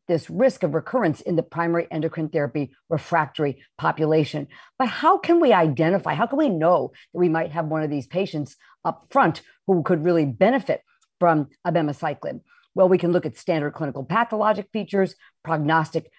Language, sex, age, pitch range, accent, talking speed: English, female, 50-69, 155-200 Hz, American, 170 wpm